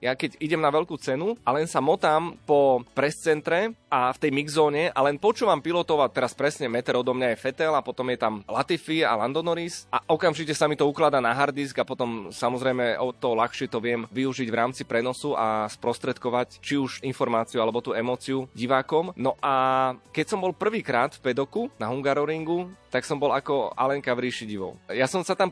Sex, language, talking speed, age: male, Slovak, 195 wpm, 20-39